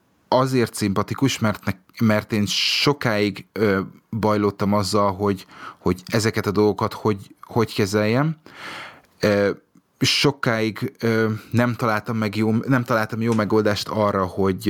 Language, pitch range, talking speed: Hungarian, 100-115 Hz, 125 wpm